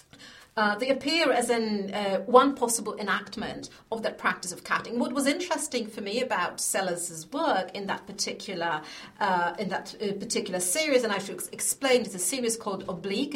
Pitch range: 195-240 Hz